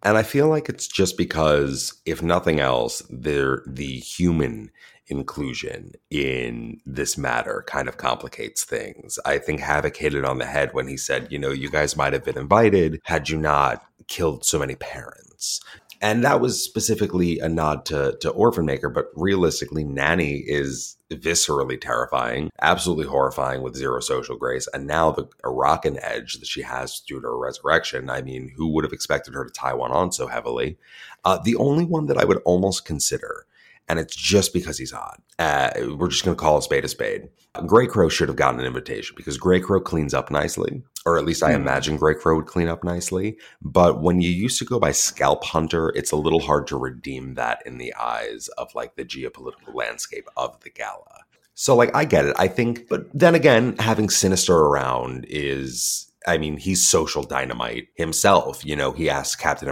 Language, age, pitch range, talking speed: English, 30-49, 70-95 Hz, 195 wpm